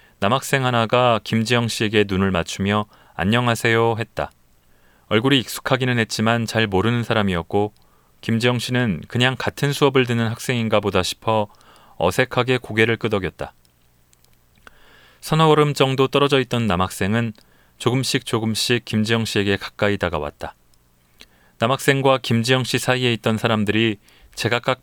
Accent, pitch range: native, 95-120 Hz